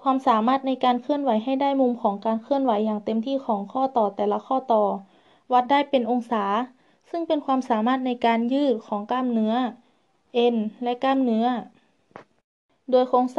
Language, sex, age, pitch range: Thai, female, 20-39, 225-260 Hz